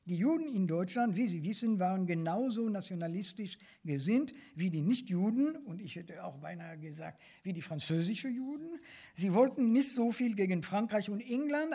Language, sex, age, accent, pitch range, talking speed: German, male, 50-69, German, 150-210 Hz, 170 wpm